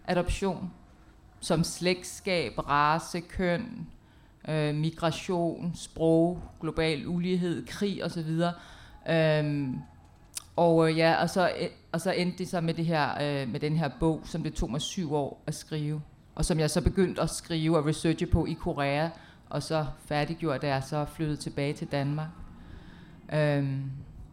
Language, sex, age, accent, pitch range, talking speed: English, female, 30-49, Danish, 155-180 Hz, 150 wpm